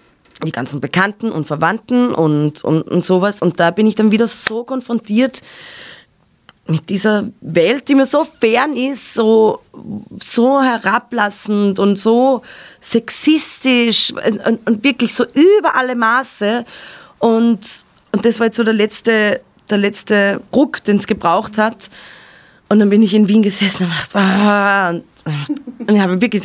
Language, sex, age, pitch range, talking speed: German, female, 20-39, 180-230 Hz, 150 wpm